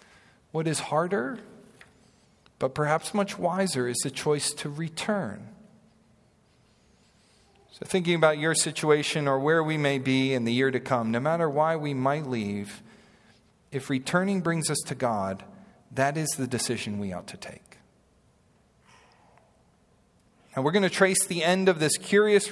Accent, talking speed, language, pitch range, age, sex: American, 150 wpm, English, 120-155 Hz, 40-59, male